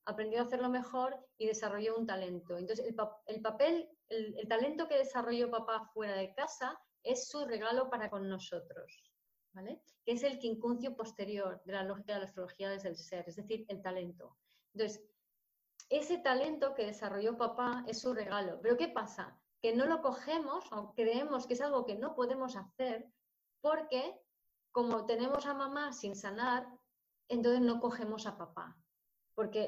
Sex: female